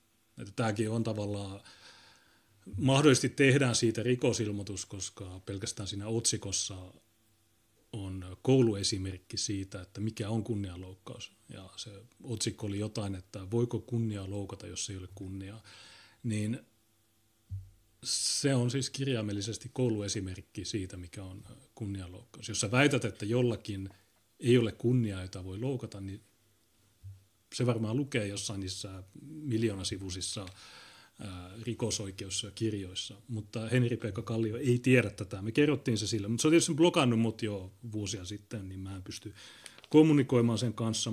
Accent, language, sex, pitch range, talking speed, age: native, Finnish, male, 100-120 Hz, 130 wpm, 30-49